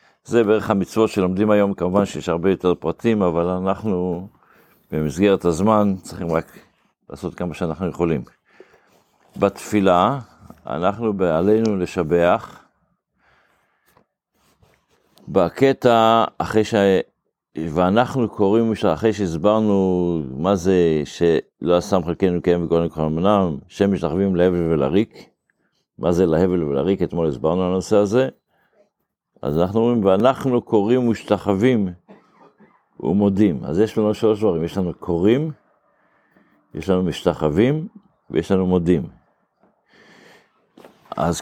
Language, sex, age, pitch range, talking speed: Hebrew, male, 50-69, 85-110 Hz, 110 wpm